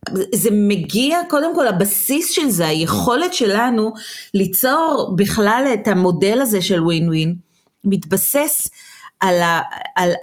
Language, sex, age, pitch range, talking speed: Hebrew, female, 30-49, 180-245 Hz, 115 wpm